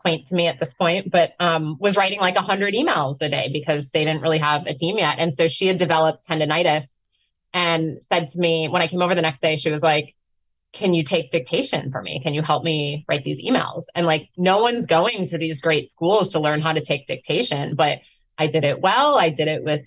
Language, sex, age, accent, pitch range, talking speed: English, female, 20-39, American, 155-205 Hz, 240 wpm